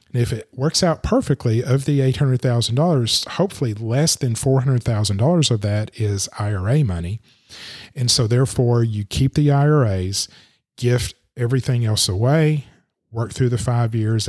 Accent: American